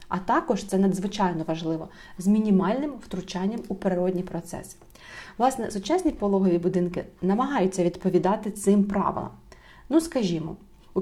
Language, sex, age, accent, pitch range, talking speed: Ukrainian, female, 30-49, native, 185-225 Hz, 120 wpm